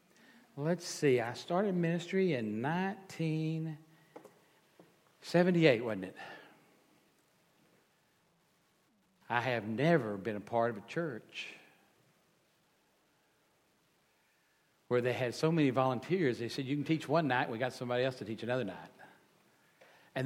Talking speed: 120 wpm